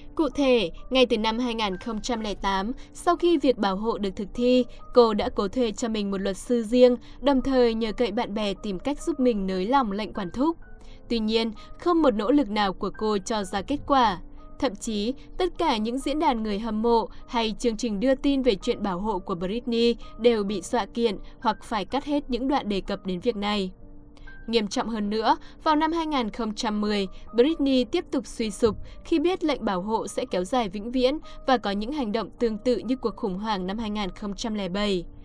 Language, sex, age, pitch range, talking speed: Vietnamese, female, 10-29, 210-260 Hz, 210 wpm